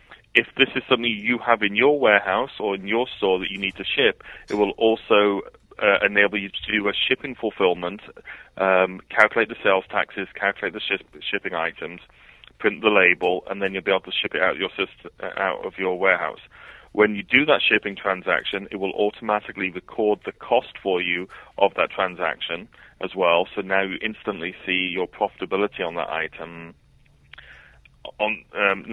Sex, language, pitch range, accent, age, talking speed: male, English, 95-110 Hz, British, 30-49, 175 wpm